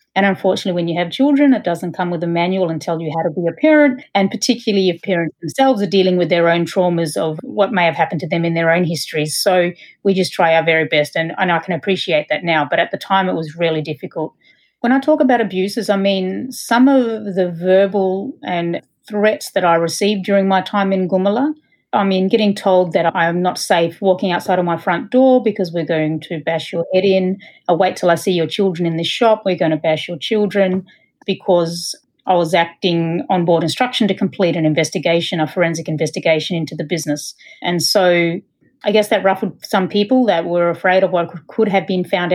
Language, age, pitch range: English, 40-59, 170-205 Hz